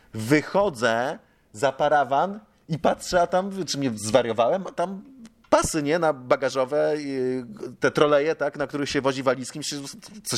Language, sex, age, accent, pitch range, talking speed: Polish, male, 30-49, native, 135-160 Hz, 145 wpm